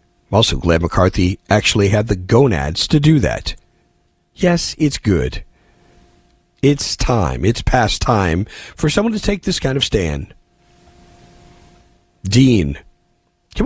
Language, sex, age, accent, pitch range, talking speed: English, male, 50-69, American, 95-140 Hz, 125 wpm